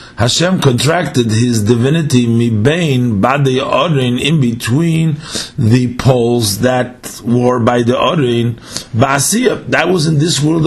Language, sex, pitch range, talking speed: English, male, 120-165 Hz, 130 wpm